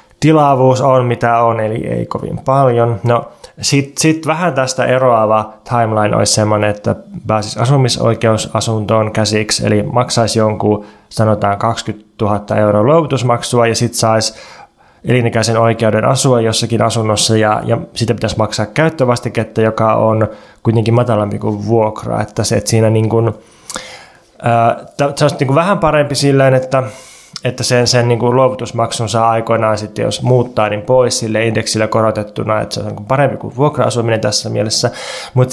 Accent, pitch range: native, 110-130 Hz